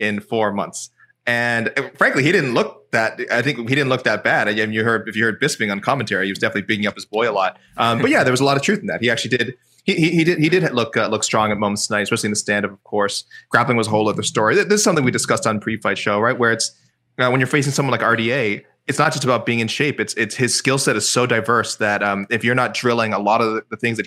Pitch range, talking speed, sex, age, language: 105-125 Hz, 295 wpm, male, 20-39, English